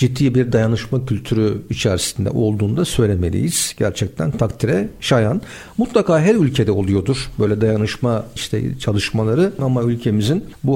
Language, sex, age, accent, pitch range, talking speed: Turkish, male, 60-79, native, 115-180 Hz, 115 wpm